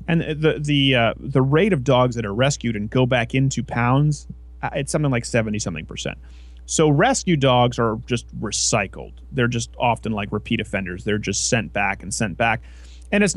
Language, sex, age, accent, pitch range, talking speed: English, male, 30-49, American, 100-150 Hz, 190 wpm